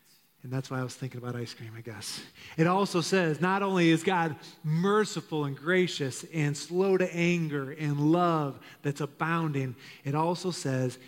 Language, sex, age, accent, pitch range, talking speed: English, male, 30-49, American, 150-205 Hz, 175 wpm